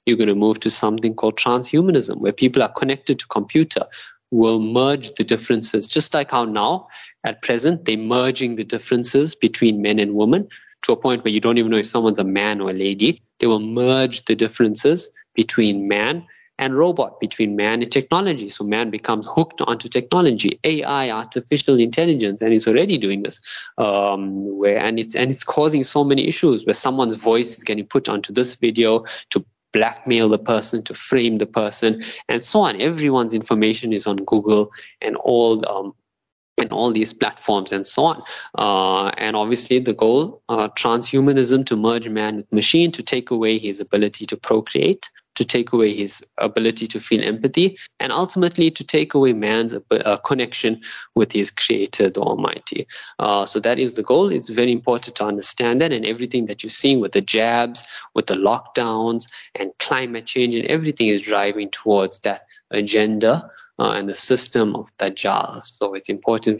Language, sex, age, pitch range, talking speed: English, male, 20-39, 105-125 Hz, 180 wpm